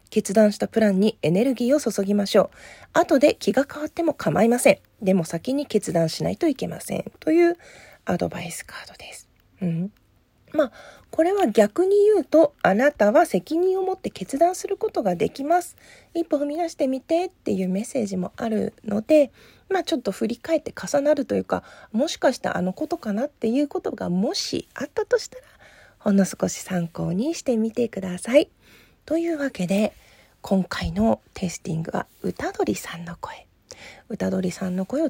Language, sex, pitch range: Japanese, female, 190-305 Hz